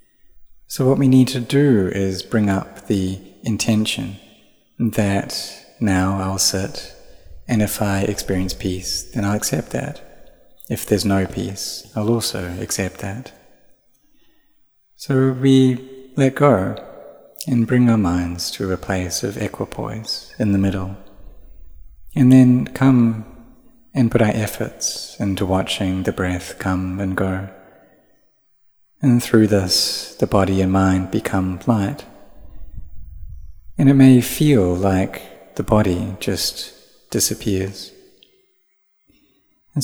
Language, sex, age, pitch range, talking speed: English, male, 30-49, 95-120 Hz, 120 wpm